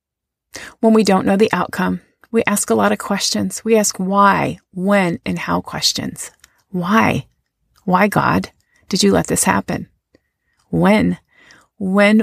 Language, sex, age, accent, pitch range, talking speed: English, female, 30-49, American, 155-235 Hz, 140 wpm